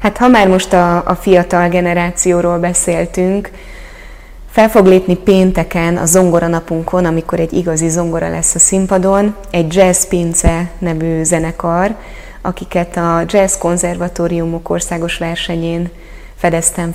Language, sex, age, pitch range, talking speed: Hungarian, female, 20-39, 170-190 Hz, 120 wpm